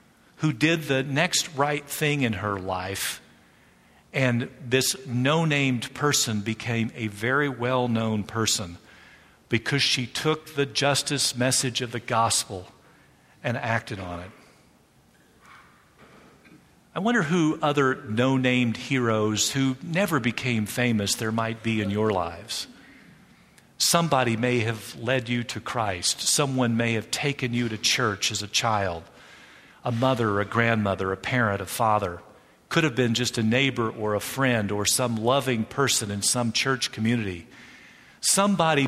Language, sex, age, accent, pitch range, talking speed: English, male, 50-69, American, 110-140 Hz, 140 wpm